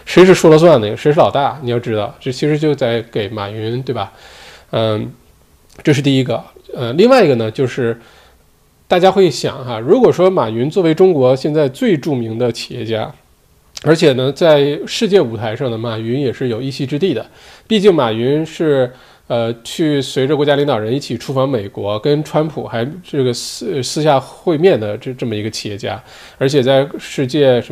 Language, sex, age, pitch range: Chinese, male, 20-39, 115-155 Hz